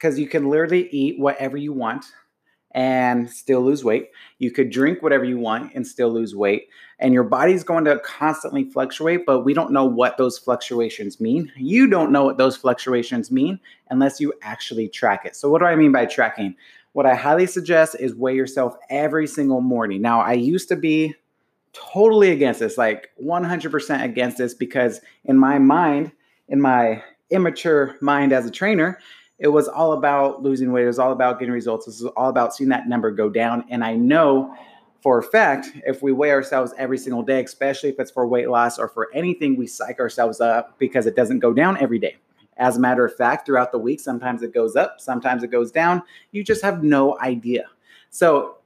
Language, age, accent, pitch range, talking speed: English, 30-49, American, 125-150 Hz, 205 wpm